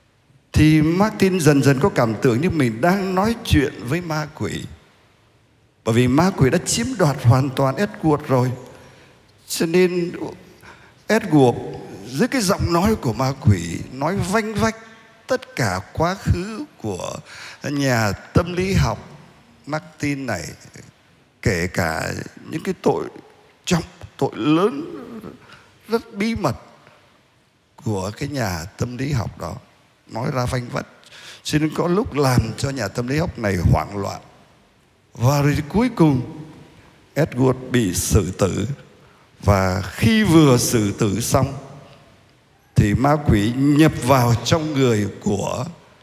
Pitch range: 115-155 Hz